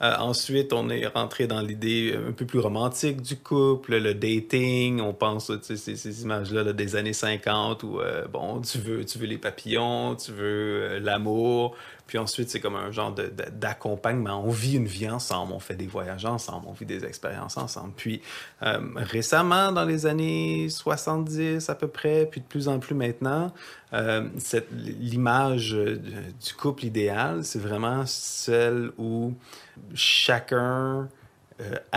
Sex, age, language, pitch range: male, 30-49, French, 105-130 Hz